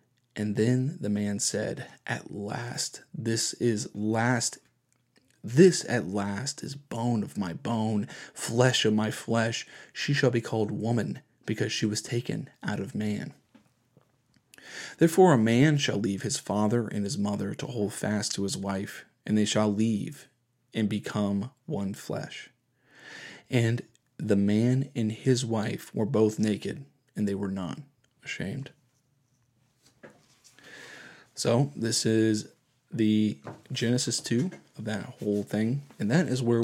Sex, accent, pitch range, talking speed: male, American, 105-120 Hz, 140 wpm